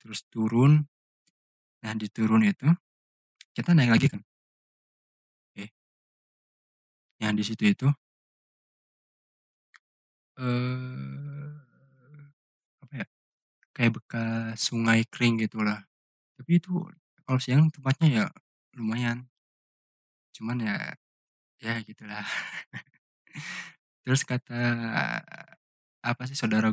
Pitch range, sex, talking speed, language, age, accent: 105-140 Hz, male, 85 wpm, Indonesian, 20-39, native